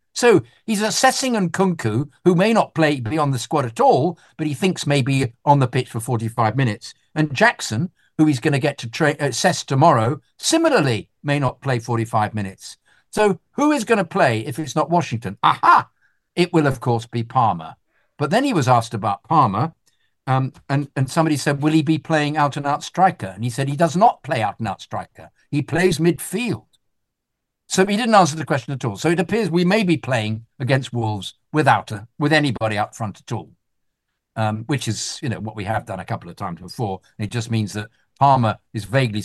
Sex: male